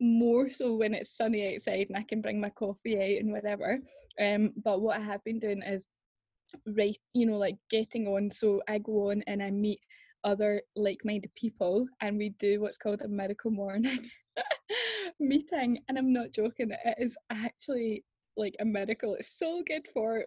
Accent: British